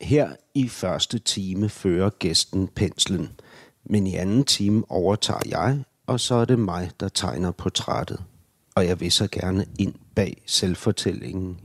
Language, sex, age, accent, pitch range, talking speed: Danish, male, 60-79, native, 90-110 Hz, 150 wpm